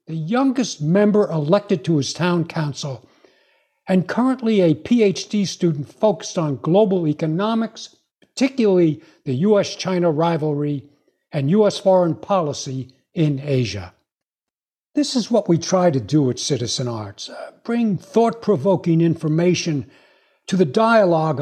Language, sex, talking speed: English, male, 125 wpm